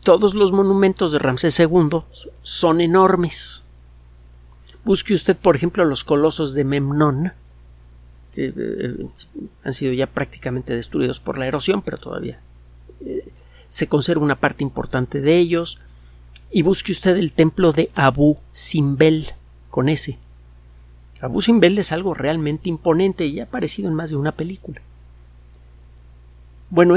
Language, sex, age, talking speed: Spanish, male, 50-69, 135 wpm